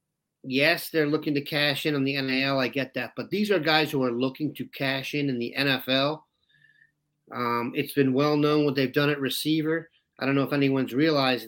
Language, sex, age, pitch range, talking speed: English, male, 40-59, 135-160 Hz, 210 wpm